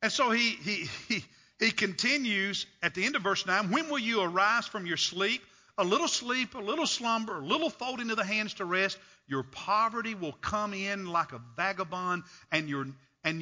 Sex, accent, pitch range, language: male, American, 165-235 Hz, English